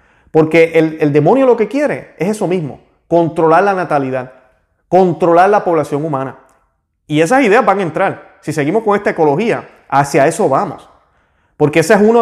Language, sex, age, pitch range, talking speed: Spanish, male, 30-49, 130-165 Hz, 170 wpm